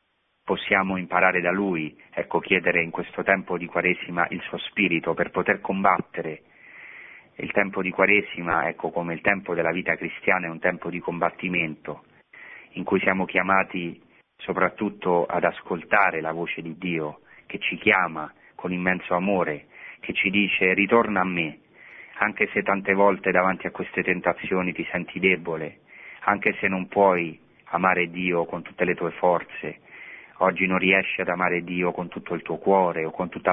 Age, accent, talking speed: 30-49, native, 165 wpm